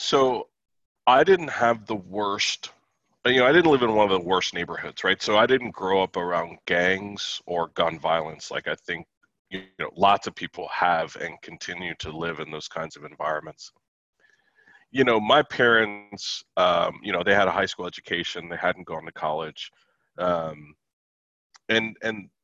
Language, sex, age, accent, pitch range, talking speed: English, male, 40-59, American, 85-100 Hz, 180 wpm